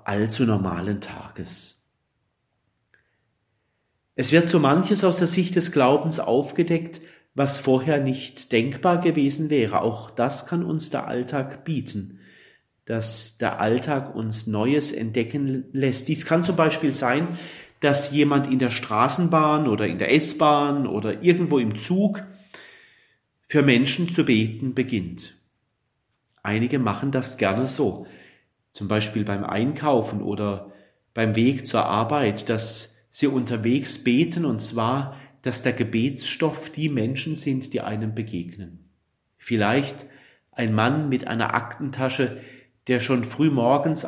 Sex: male